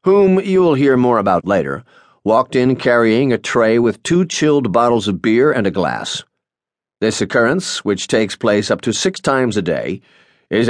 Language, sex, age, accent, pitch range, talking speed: English, male, 40-59, American, 110-145 Hz, 185 wpm